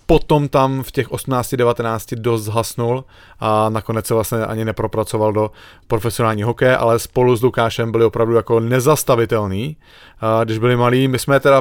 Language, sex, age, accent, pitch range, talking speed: English, male, 30-49, Czech, 115-160 Hz, 150 wpm